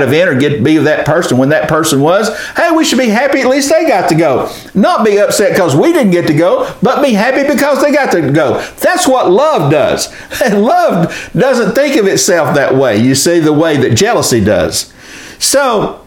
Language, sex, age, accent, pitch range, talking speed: English, male, 60-79, American, 145-190 Hz, 225 wpm